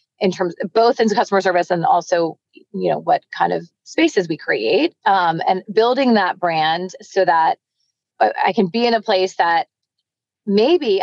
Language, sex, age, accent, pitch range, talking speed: English, female, 30-49, American, 170-215 Hz, 175 wpm